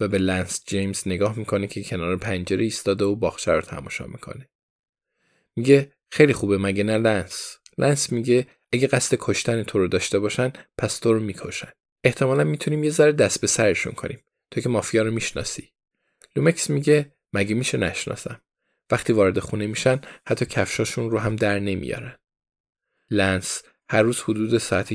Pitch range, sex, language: 100-125 Hz, male, Persian